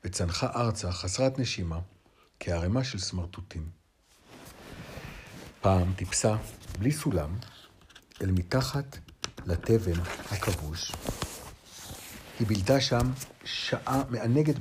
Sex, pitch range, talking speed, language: male, 90-130 Hz, 80 wpm, Hebrew